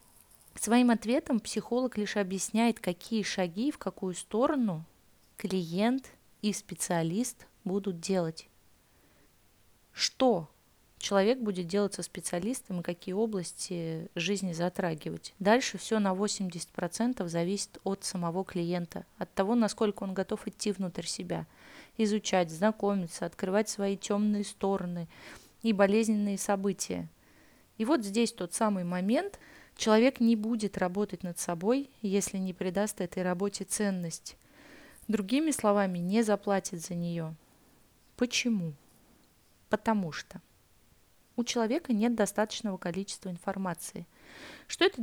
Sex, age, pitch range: female, 20-39, 185-225 Hz